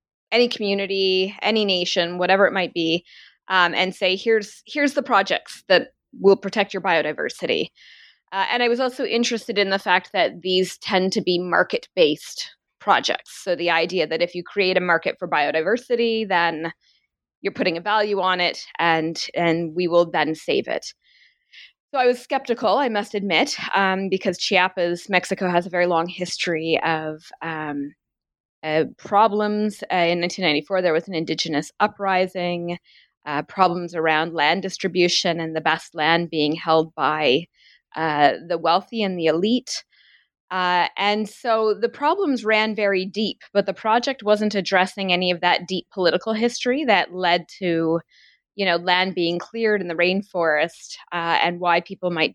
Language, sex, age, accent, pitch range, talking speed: English, female, 20-39, American, 170-210 Hz, 165 wpm